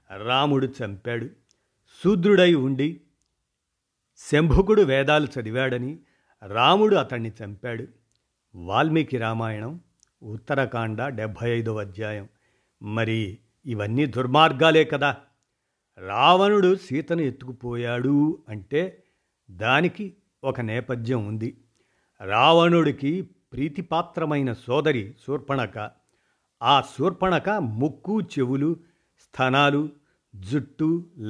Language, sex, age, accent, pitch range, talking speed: Telugu, male, 50-69, native, 115-150 Hz, 75 wpm